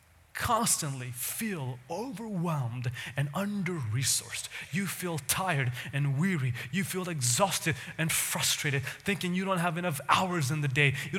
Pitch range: 140-210 Hz